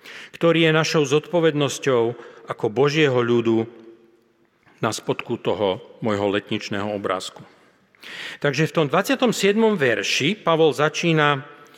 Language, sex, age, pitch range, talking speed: Slovak, male, 40-59, 135-170 Hz, 100 wpm